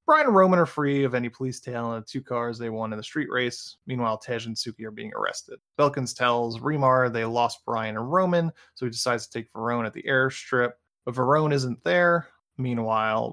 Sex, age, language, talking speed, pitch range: male, 20-39, English, 215 wpm, 115-135 Hz